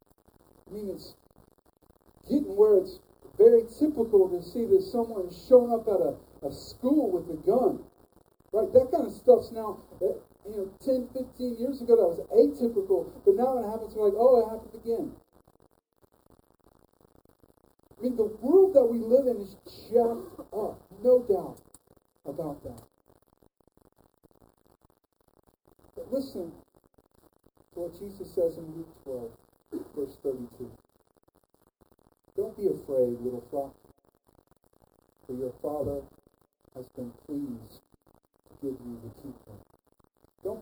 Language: English